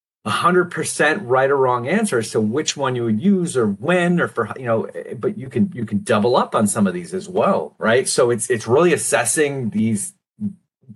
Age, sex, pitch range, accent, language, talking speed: 30-49, male, 115-180 Hz, American, English, 215 wpm